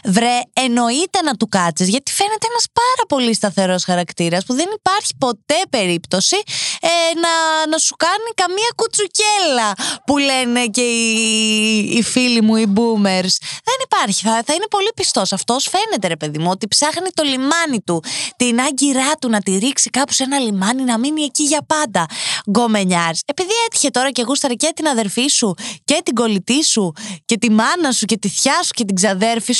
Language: Greek